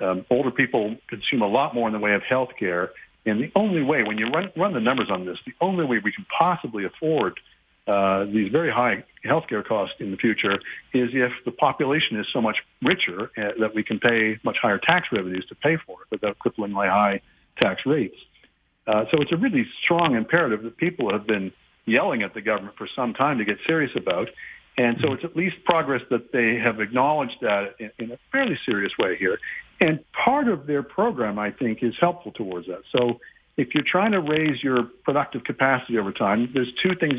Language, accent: English, American